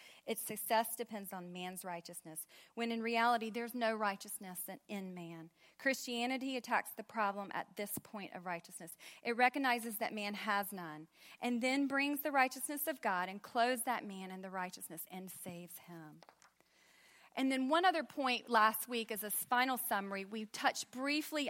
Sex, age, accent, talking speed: female, 40-59, American, 165 wpm